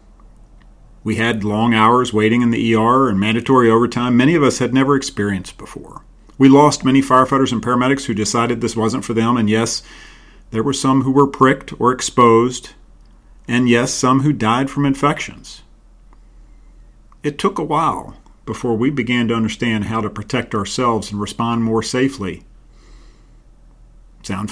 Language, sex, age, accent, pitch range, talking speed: English, male, 40-59, American, 105-130 Hz, 160 wpm